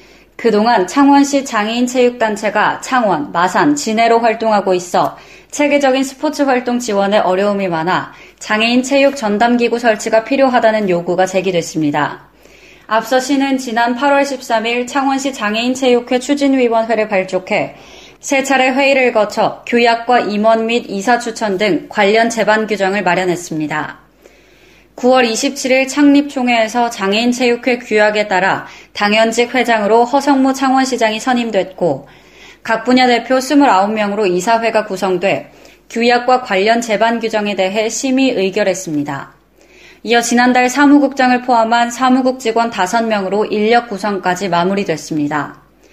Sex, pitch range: female, 205-255 Hz